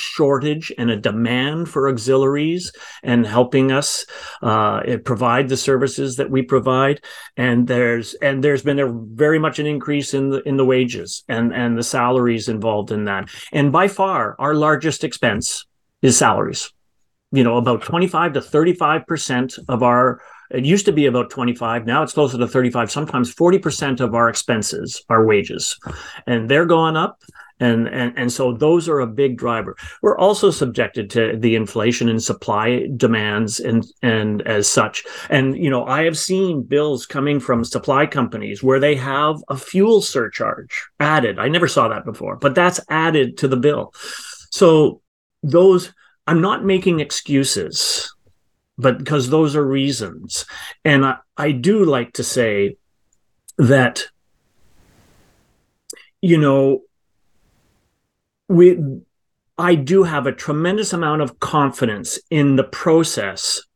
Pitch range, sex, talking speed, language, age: 120-155 Hz, male, 150 wpm, English, 40-59